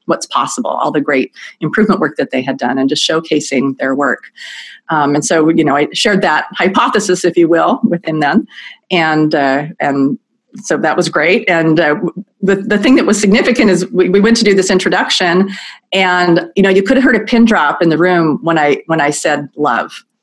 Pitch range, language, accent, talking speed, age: 150-205 Hz, English, American, 215 wpm, 40-59